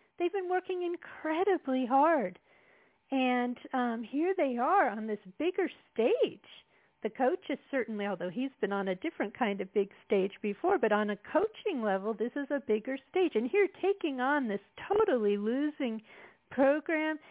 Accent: American